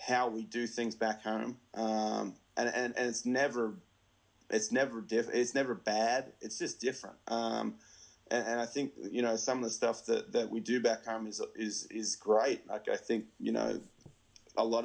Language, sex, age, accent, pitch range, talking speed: English, male, 30-49, Australian, 110-115 Hz, 200 wpm